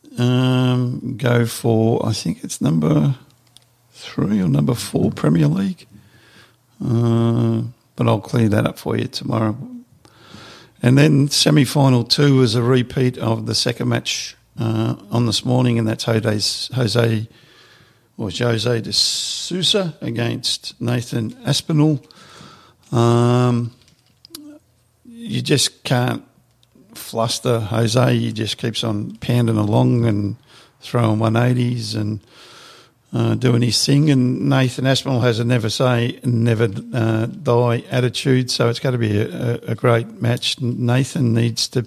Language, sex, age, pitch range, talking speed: English, male, 50-69, 115-130 Hz, 130 wpm